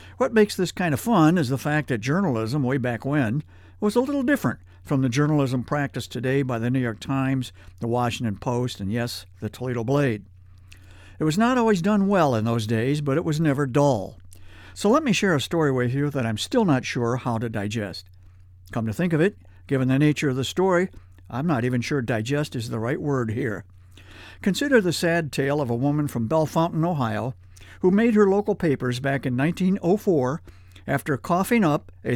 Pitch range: 105-160 Hz